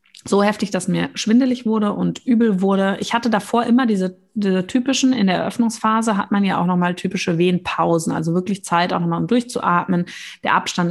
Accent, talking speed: German, 195 wpm